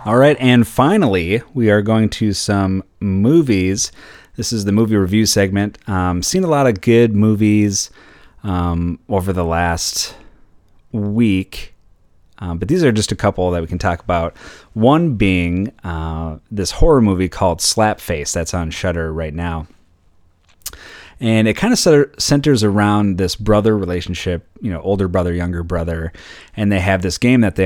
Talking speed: 165 wpm